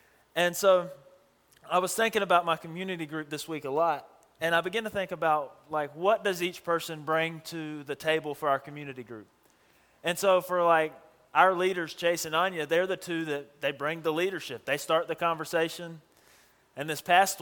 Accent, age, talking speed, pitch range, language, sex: American, 30-49, 195 wpm, 155-180 Hz, English, male